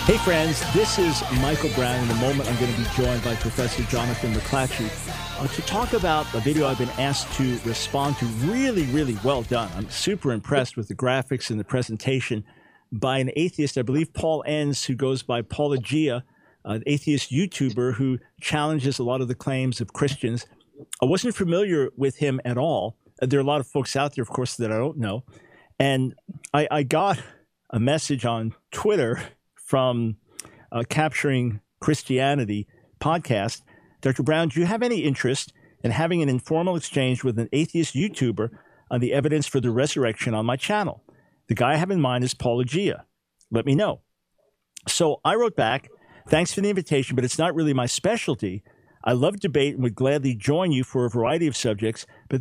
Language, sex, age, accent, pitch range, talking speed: English, male, 50-69, American, 120-150 Hz, 190 wpm